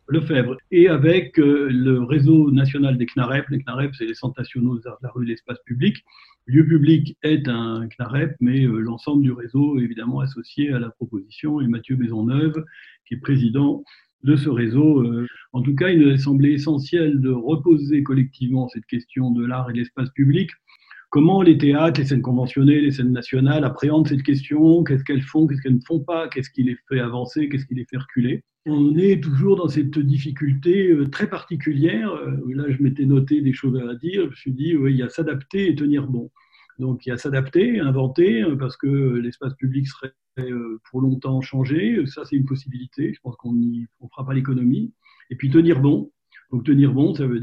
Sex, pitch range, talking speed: male, 125-150 Hz, 205 wpm